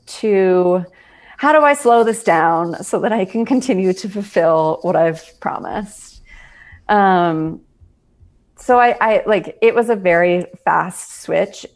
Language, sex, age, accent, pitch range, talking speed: English, female, 30-49, American, 170-205 Hz, 145 wpm